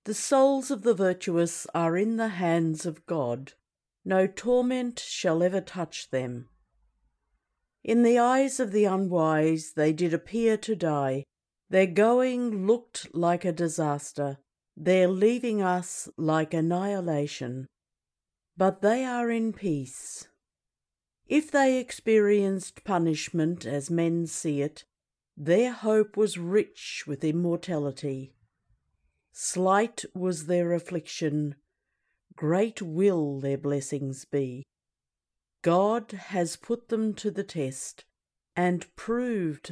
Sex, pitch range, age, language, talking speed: female, 150-210 Hz, 50-69, English, 115 wpm